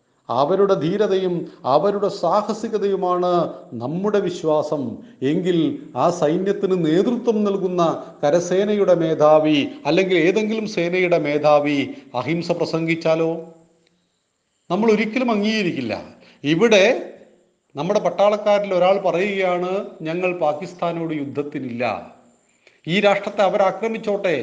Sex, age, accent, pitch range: male, 40-59, native, 150-195 Hz